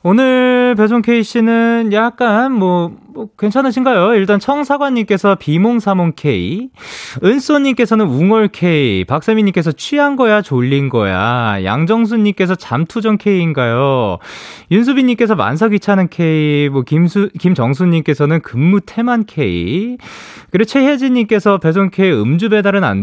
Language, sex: Korean, male